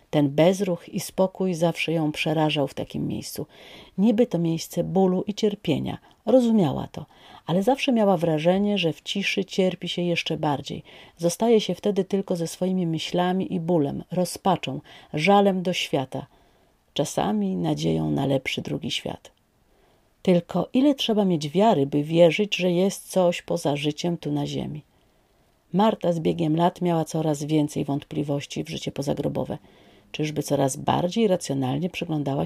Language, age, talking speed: Polish, 40-59, 145 wpm